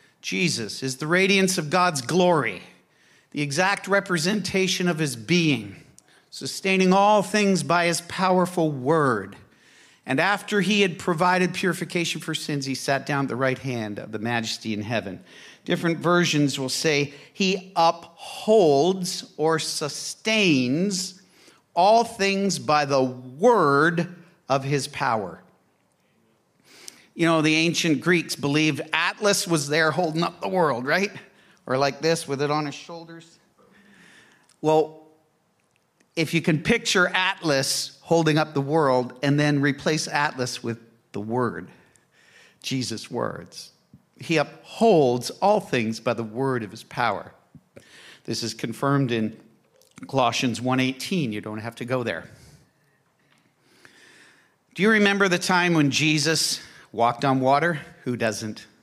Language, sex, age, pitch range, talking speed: English, male, 50-69, 130-180 Hz, 135 wpm